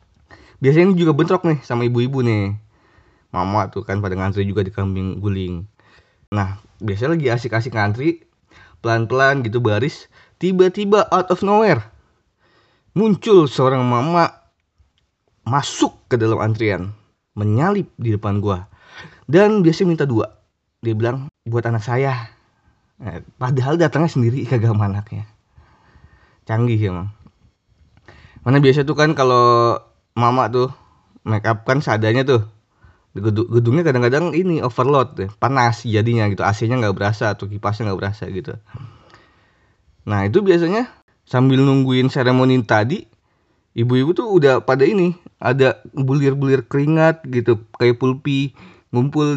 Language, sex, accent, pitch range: Indonesian, male, native, 105-140 Hz